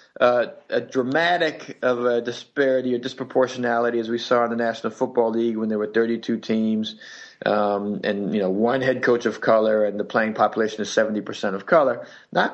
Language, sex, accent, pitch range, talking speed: English, male, American, 120-140 Hz, 190 wpm